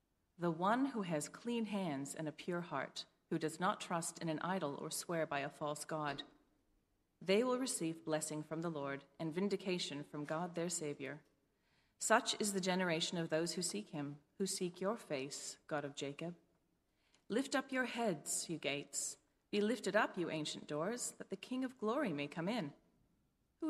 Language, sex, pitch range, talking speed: English, female, 150-205 Hz, 185 wpm